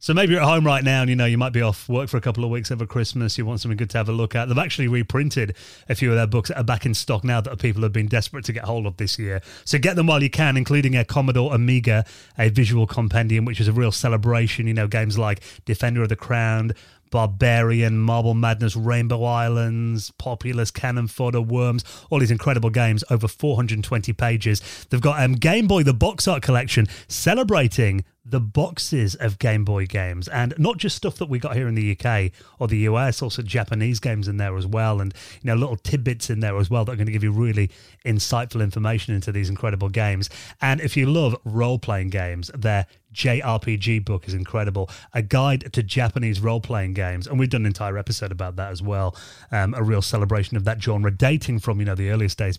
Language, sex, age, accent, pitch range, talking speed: English, male, 30-49, British, 105-125 Hz, 225 wpm